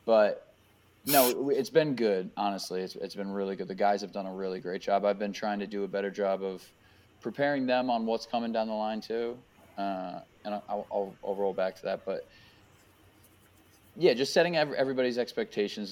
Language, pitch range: English, 100-110 Hz